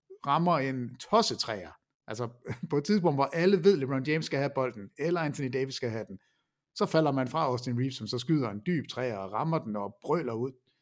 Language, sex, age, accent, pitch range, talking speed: Danish, male, 60-79, native, 130-190 Hz, 215 wpm